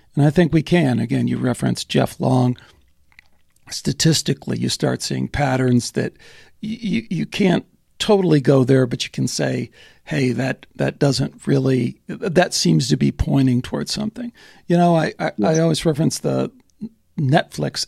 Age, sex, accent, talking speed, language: 60-79, male, American, 150 wpm, English